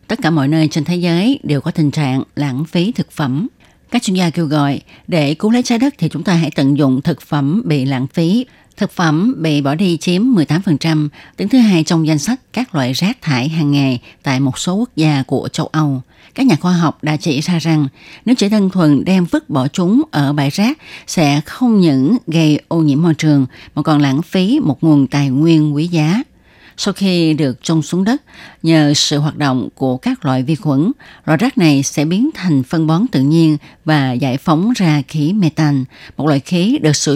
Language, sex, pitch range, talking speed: Vietnamese, female, 145-185 Hz, 220 wpm